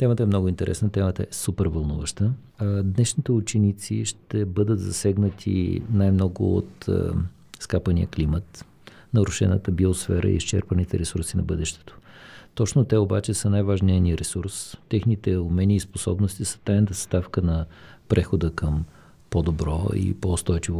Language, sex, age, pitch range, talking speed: Bulgarian, male, 50-69, 90-105 Hz, 125 wpm